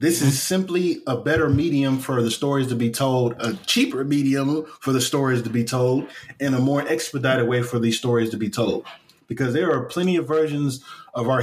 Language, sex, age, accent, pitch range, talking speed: English, male, 20-39, American, 120-155 Hz, 210 wpm